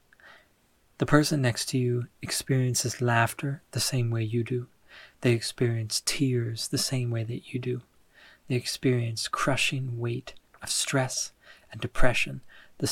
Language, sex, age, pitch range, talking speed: English, male, 30-49, 110-130 Hz, 140 wpm